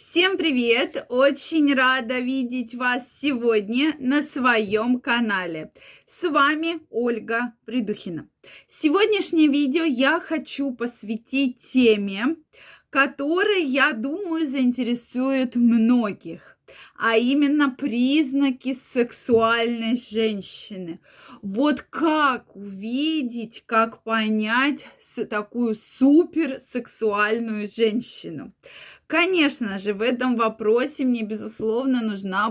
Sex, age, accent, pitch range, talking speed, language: female, 20-39, native, 220-275 Hz, 85 wpm, Russian